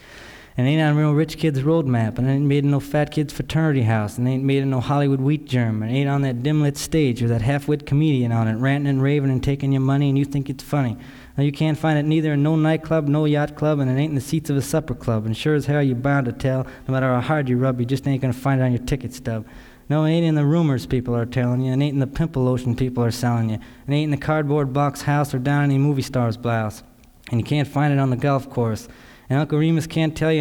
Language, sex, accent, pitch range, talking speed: English, male, American, 125-150 Hz, 300 wpm